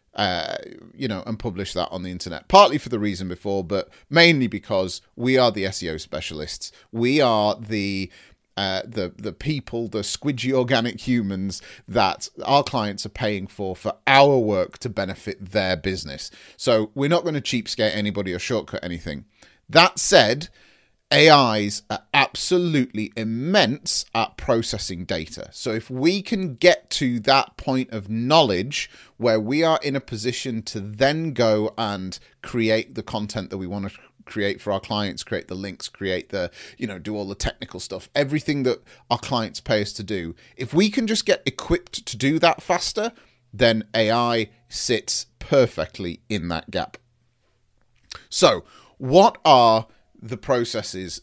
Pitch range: 100-135 Hz